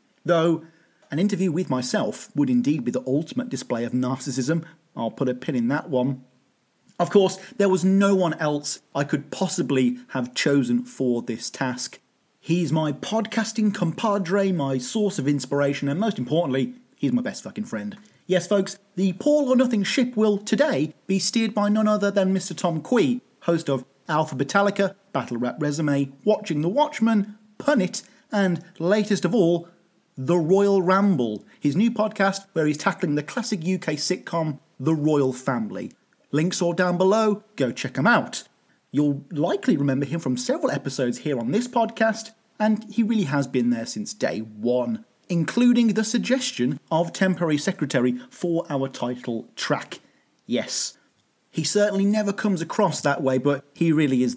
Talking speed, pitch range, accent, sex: 165 wpm, 135-205 Hz, British, male